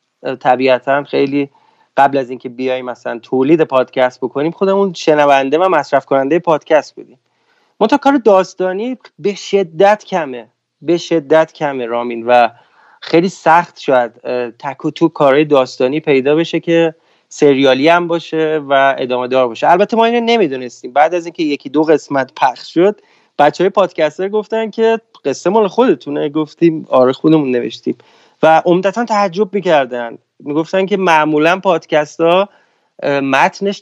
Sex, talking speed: male, 135 wpm